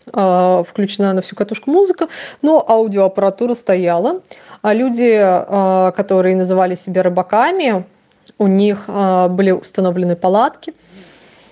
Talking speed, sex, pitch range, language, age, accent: 95 wpm, female, 190-245 Hz, Russian, 20-39, native